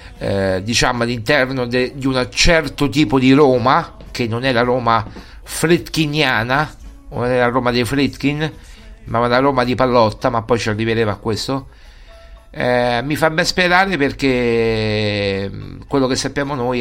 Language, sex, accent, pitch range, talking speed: Italian, male, native, 105-130 Hz, 150 wpm